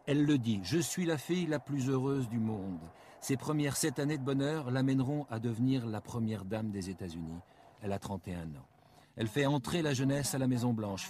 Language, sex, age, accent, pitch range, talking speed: French, male, 60-79, French, 105-140 Hz, 210 wpm